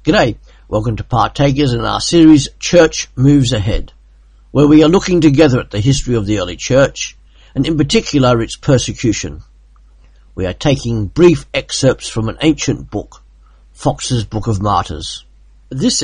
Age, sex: 50-69, male